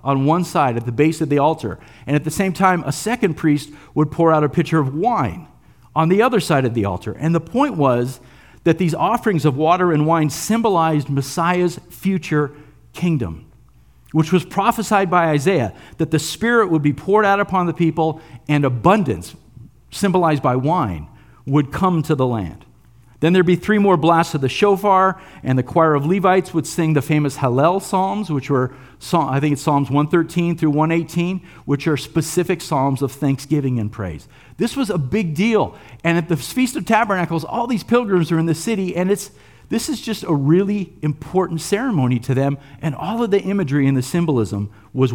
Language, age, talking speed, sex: English, 50-69, 195 wpm, male